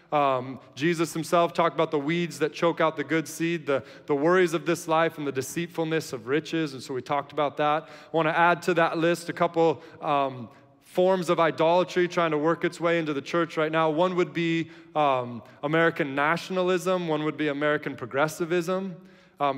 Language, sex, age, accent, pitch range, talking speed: English, male, 20-39, American, 130-170 Hz, 195 wpm